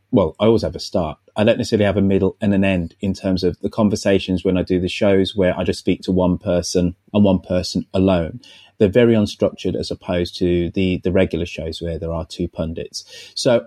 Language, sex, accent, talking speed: English, male, British, 230 wpm